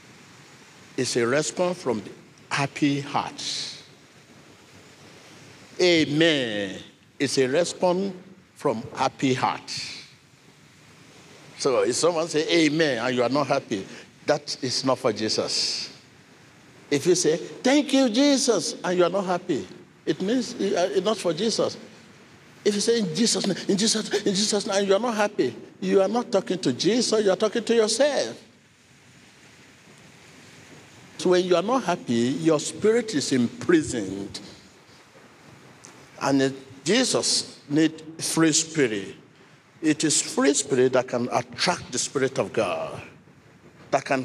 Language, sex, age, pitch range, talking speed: English, male, 50-69, 135-195 Hz, 140 wpm